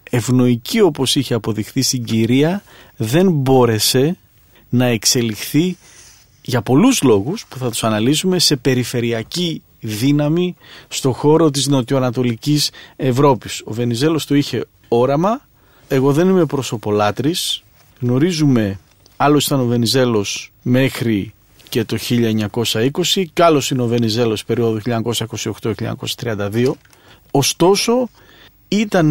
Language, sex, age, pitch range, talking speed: Greek, male, 40-59, 120-155 Hz, 105 wpm